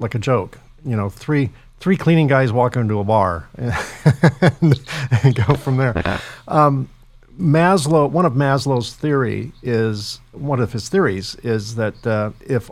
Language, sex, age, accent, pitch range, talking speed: English, male, 50-69, American, 110-130 Hz, 155 wpm